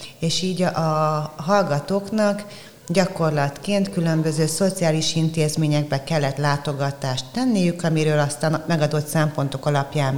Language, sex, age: Hungarian, female, 30-49